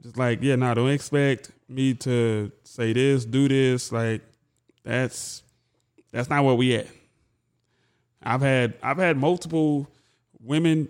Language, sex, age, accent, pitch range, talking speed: English, male, 20-39, American, 120-150 Hz, 140 wpm